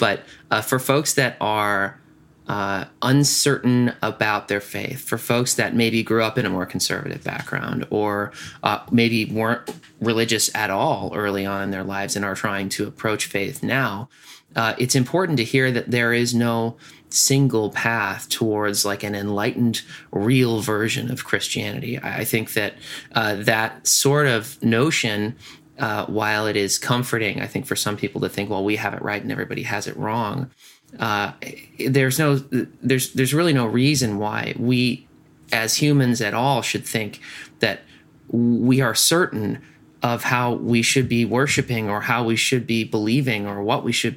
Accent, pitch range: American, 105-130 Hz